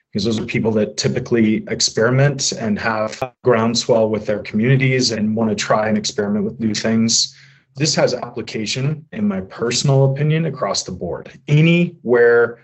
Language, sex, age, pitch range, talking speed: English, male, 30-49, 110-140 Hz, 155 wpm